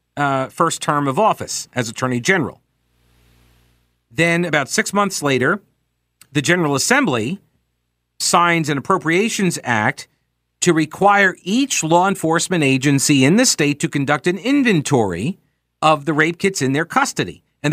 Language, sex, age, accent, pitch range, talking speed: English, male, 50-69, American, 135-185 Hz, 140 wpm